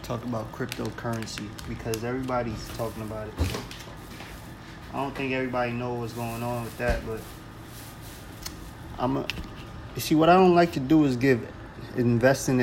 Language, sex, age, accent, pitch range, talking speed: English, male, 20-39, American, 110-125 Hz, 155 wpm